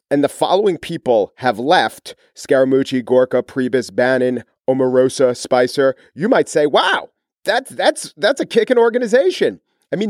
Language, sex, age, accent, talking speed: English, male, 40-59, American, 150 wpm